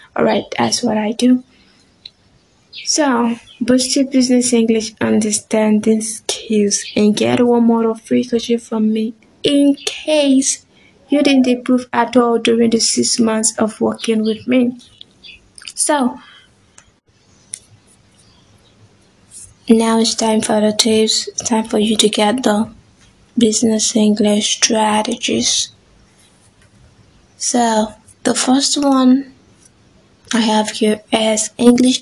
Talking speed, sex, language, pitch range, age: 115 wpm, female, English, 215-245 Hz, 20-39